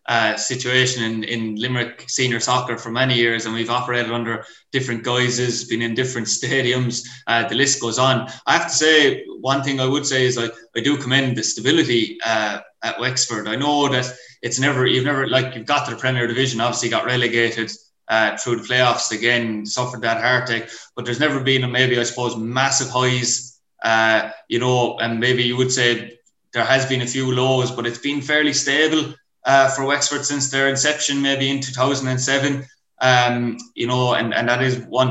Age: 20-39